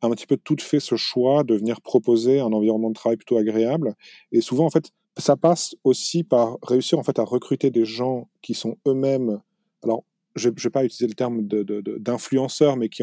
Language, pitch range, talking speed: French, 115-150 Hz, 225 wpm